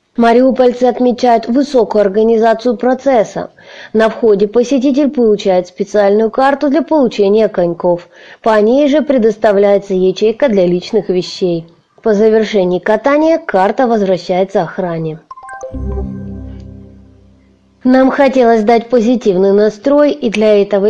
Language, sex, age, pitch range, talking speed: Russian, female, 20-39, 195-255 Hz, 105 wpm